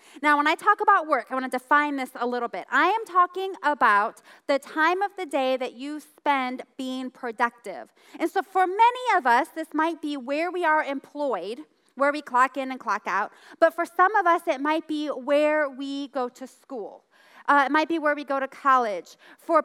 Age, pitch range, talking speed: 30-49, 245-315 Hz, 215 wpm